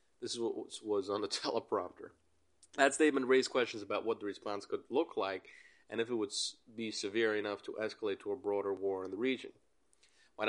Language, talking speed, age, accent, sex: English, 200 wpm, 30-49, American, male